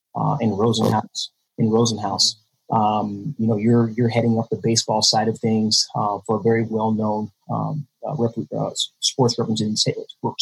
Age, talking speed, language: 30-49, 175 wpm, English